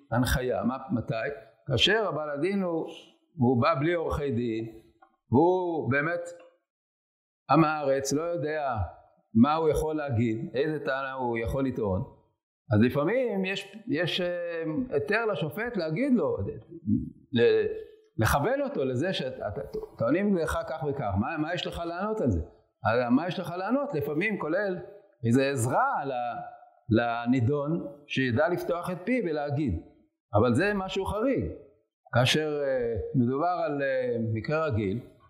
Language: Hebrew